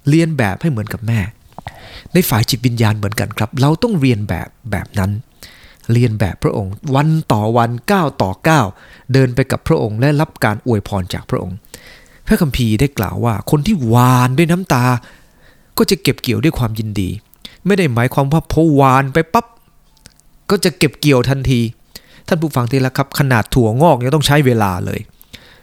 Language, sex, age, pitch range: English, male, 20-39, 115-160 Hz